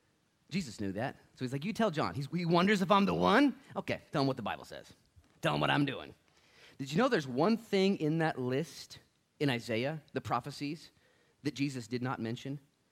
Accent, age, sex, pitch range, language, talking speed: American, 30-49, male, 115-170 Hz, English, 215 wpm